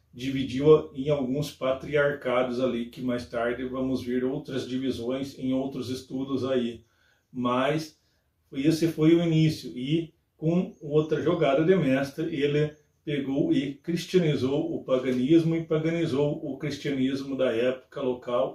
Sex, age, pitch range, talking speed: male, 40-59, 125-150 Hz, 130 wpm